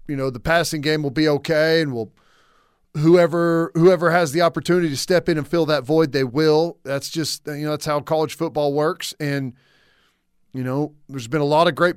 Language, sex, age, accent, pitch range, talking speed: English, male, 40-59, American, 145-175 Hz, 210 wpm